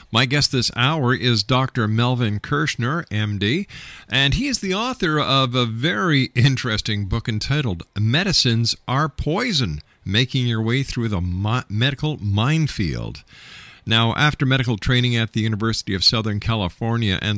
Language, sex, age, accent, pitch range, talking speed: English, male, 50-69, American, 100-130 Hz, 140 wpm